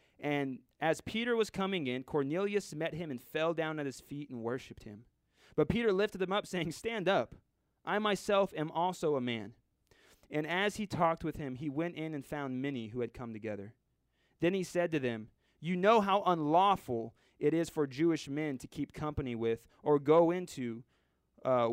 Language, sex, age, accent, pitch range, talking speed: English, male, 30-49, American, 130-175 Hz, 195 wpm